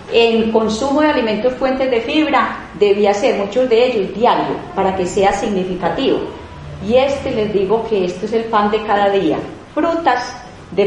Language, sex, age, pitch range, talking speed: Spanish, female, 40-59, 205-255 Hz, 170 wpm